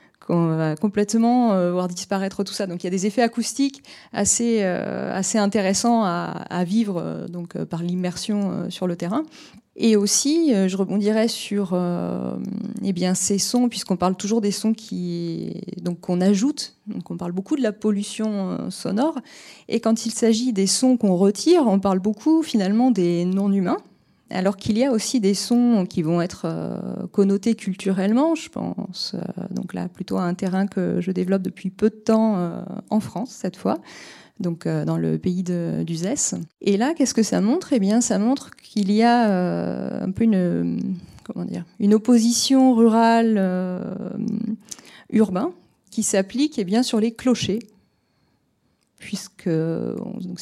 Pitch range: 185-225 Hz